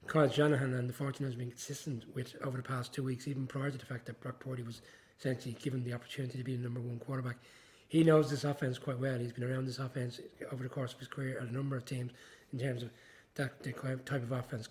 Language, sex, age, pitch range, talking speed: English, male, 20-39, 125-140 Hz, 255 wpm